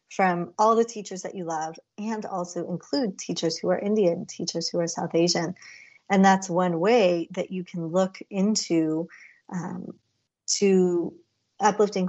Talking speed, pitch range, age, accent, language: 155 wpm, 170-205 Hz, 30-49, American, English